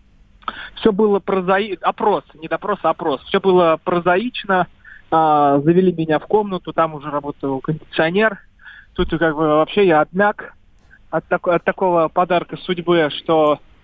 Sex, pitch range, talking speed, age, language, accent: male, 145-180 Hz, 145 wpm, 20-39, Russian, native